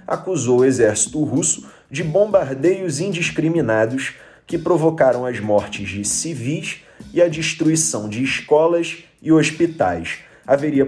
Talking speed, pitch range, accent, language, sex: 115 wpm, 120-165 Hz, Brazilian, Portuguese, male